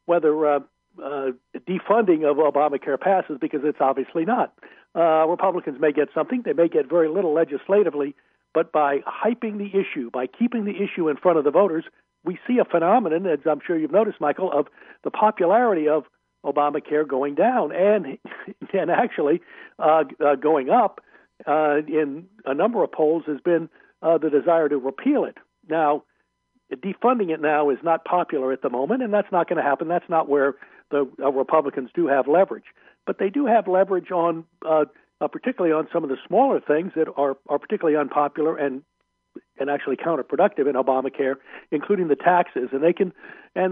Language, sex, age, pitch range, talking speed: English, male, 60-79, 145-185 Hz, 185 wpm